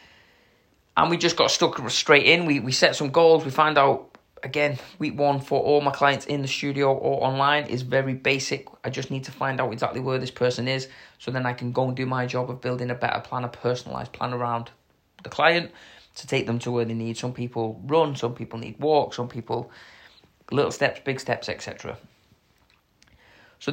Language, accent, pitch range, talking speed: English, British, 115-135 Hz, 210 wpm